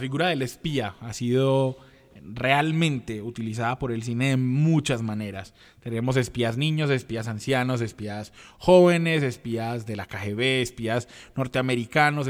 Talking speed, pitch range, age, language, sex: 125 wpm, 120-145 Hz, 20-39, Spanish, male